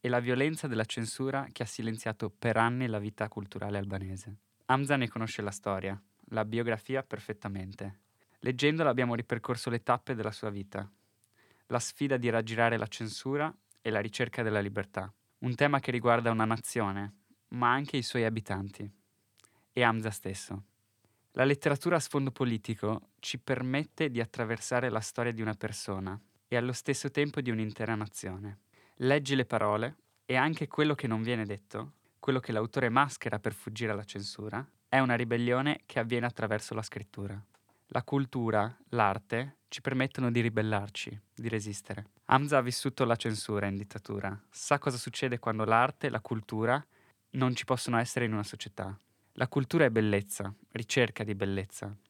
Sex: male